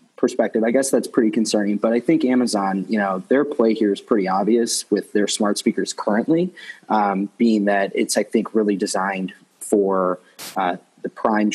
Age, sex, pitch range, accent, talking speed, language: 20-39, male, 95-110 Hz, American, 180 wpm, English